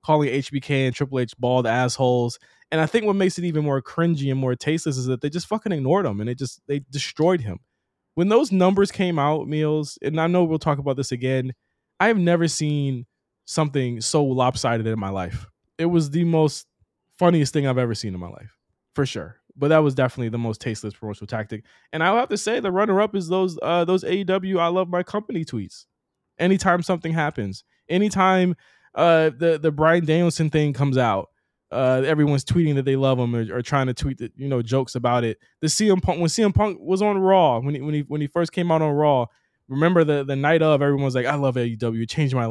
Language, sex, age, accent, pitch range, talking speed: English, male, 20-39, American, 125-170 Hz, 225 wpm